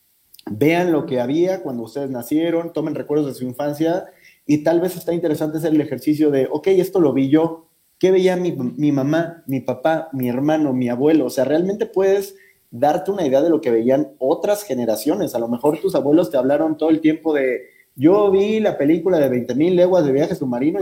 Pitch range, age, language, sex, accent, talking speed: 125-165 Hz, 40-59, Spanish, male, Mexican, 210 wpm